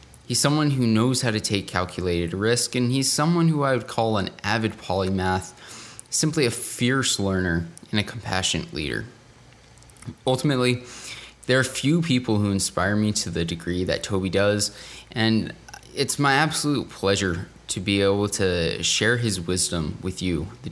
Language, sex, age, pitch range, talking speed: English, male, 20-39, 95-125 Hz, 160 wpm